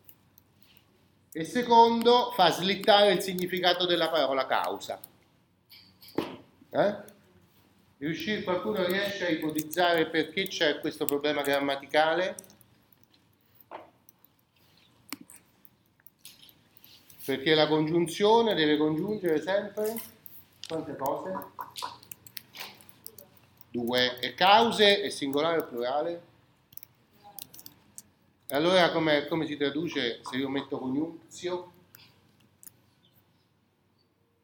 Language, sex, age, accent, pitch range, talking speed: Italian, male, 40-59, native, 140-185 Hz, 75 wpm